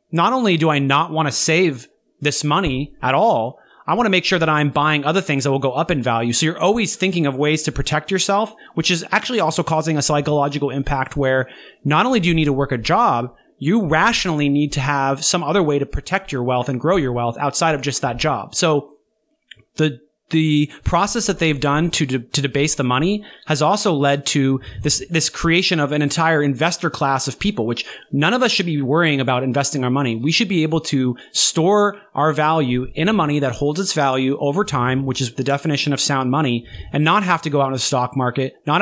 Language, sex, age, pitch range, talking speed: English, male, 30-49, 140-180 Hz, 225 wpm